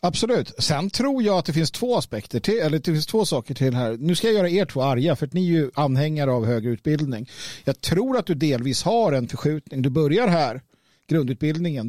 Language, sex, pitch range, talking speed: Swedish, male, 135-185 Hz, 225 wpm